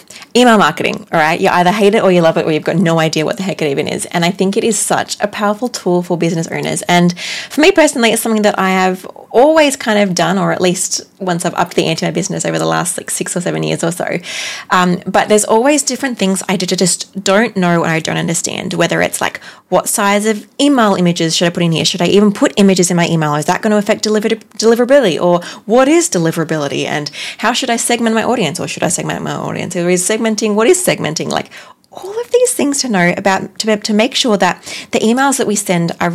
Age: 20-39